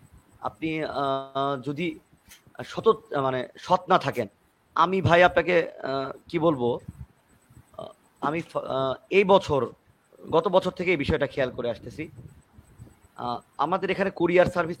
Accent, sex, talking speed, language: native, male, 55 wpm, Bengali